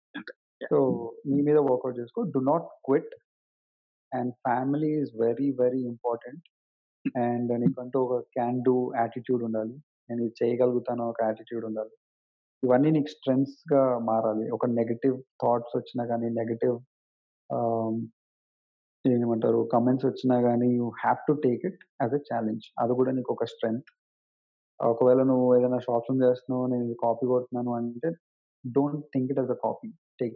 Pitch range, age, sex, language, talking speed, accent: 115-140 Hz, 30-49, male, Telugu, 145 wpm, native